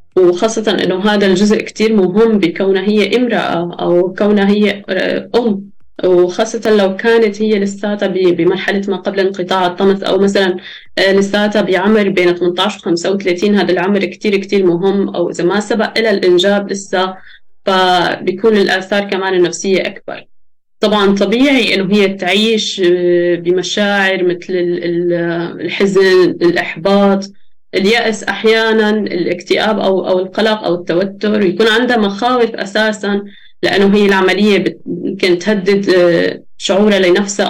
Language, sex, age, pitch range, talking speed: Arabic, female, 20-39, 180-210 Hz, 120 wpm